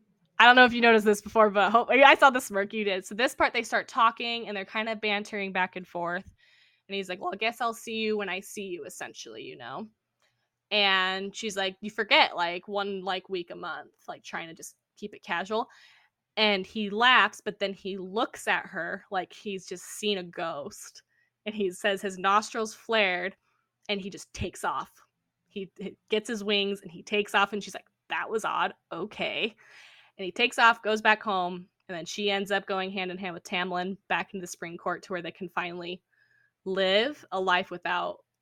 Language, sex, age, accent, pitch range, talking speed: English, female, 10-29, American, 190-235 Hz, 210 wpm